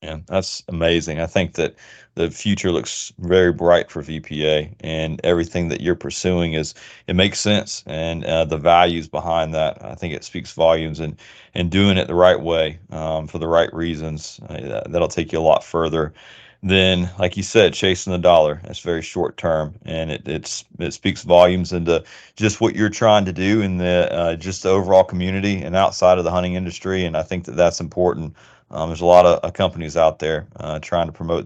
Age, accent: 30-49, American